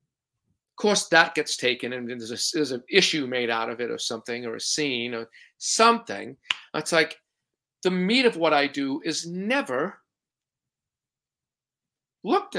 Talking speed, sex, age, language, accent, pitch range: 155 wpm, male, 50-69, English, American, 145-210 Hz